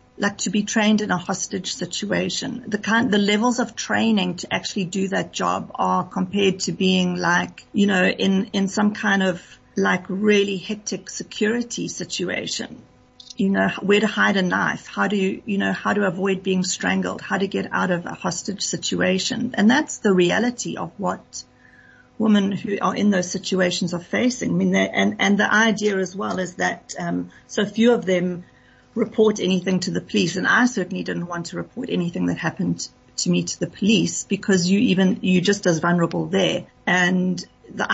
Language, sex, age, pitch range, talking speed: English, female, 40-59, 175-205 Hz, 190 wpm